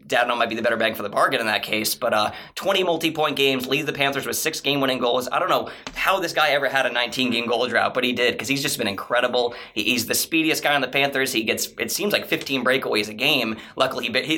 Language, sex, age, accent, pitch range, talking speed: English, male, 20-39, American, 120-155 Hz, 270 wpm